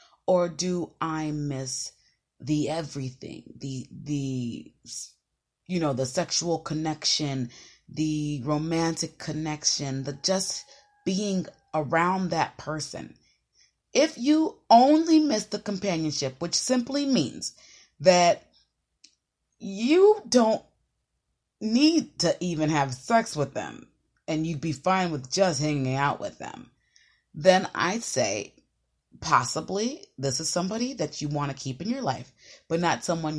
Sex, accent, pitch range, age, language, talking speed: female, American, 150-220 Hz, 30-49, English, 125 wpm